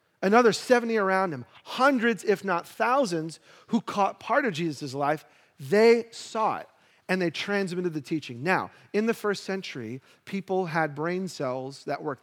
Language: English